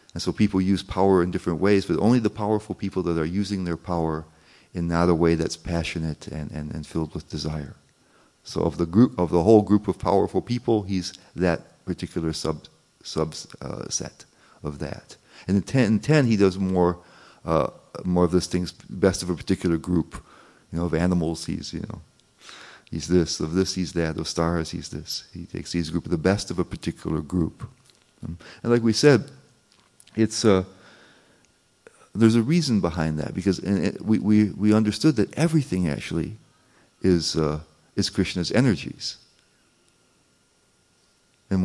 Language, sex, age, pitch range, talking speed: English, male, 40-59, 85-105 Hz, 175 wpm